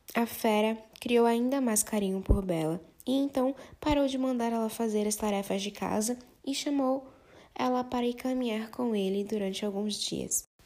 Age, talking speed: 10-29, 170 wpm